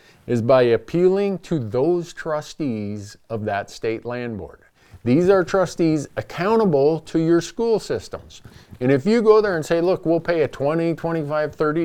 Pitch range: 135-200 Hz